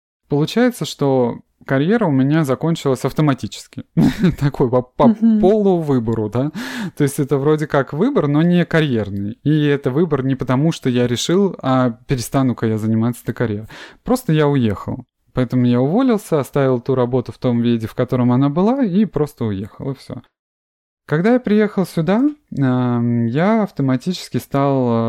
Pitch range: 115-150 Hz